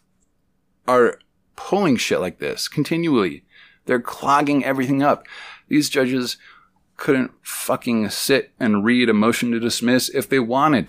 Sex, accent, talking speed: male, American, 130 wpm